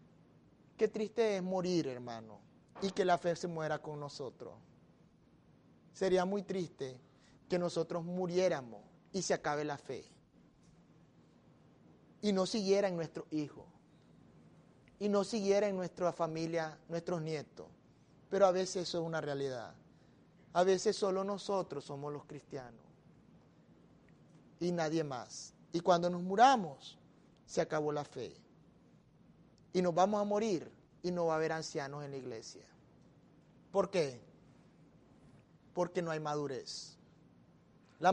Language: Spanish